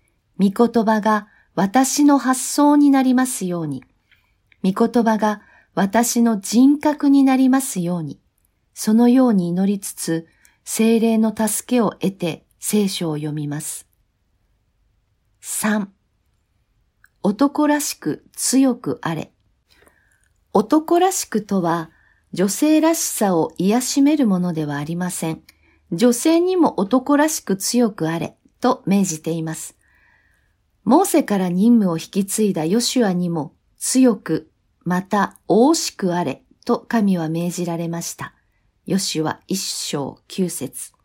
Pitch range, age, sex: 165-260 Hz, 50-69, female